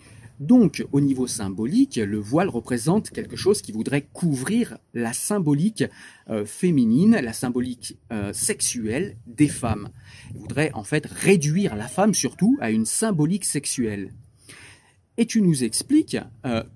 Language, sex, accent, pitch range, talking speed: French, male, French, 120-180 Hz, 140 wpm